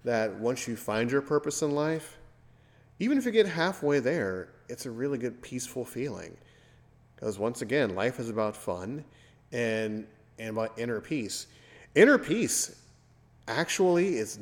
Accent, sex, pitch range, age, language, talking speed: American, male, 105-125 Hz, 30-49, English, 150 wpm